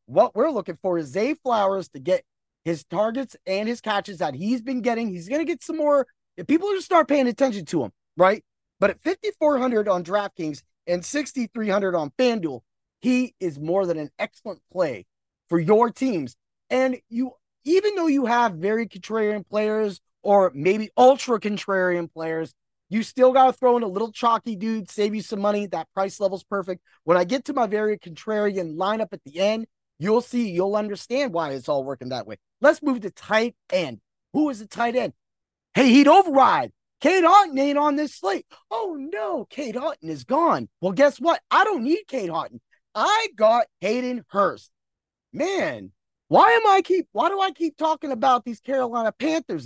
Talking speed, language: 185 wpm, English